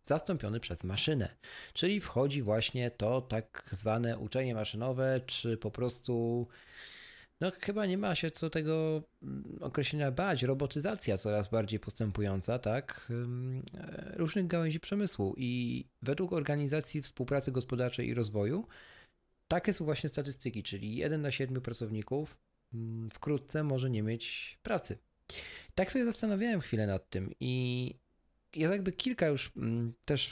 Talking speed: 125 wpm